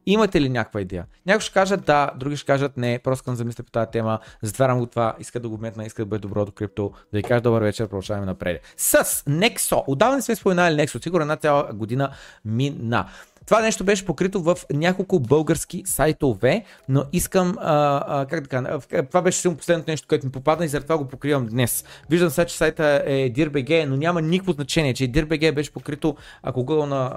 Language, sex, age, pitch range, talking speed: Bulgarian, male, 30-49, 115-155 Hz, 205 wpm